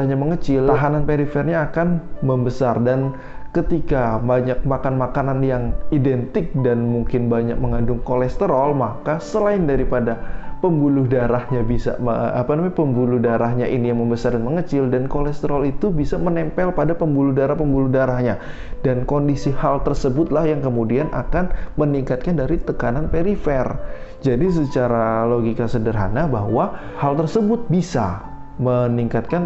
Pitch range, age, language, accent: 120-150 Hz, 20-39, Indonesian, native